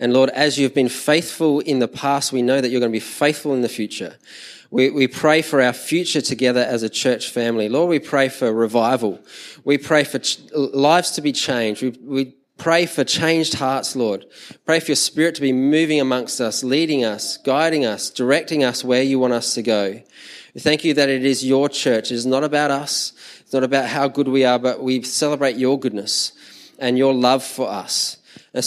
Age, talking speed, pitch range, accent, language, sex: 20-39, 215 wpm, 125-150 Hz, Australian, English, male